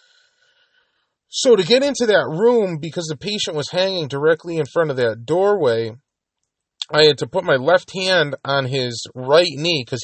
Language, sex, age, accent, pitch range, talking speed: English, male, 30-49, American, 120-190 Hz, 175 wpm